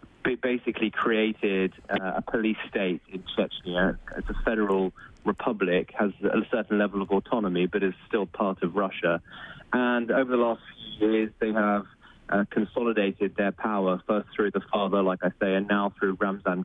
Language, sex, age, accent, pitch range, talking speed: English, male, 20-39, British, 95-110 Hz, 170 wpm